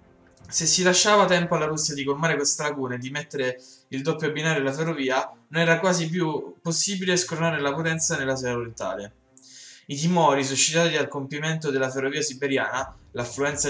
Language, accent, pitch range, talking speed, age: Italian, native, 130-165 Hz, 160 wpm, 10-29